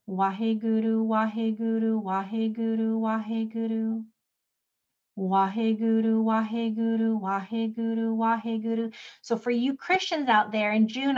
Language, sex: English, female